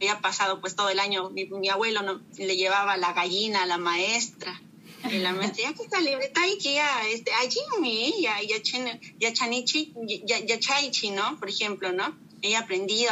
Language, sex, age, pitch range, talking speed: English, female, 30-49, 195-265 Hz, 190 wpm